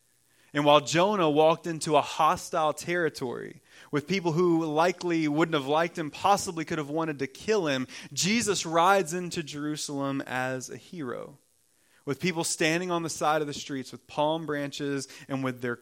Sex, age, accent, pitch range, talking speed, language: male, 30-49, American, 135-160 Hz, 170 wpm, English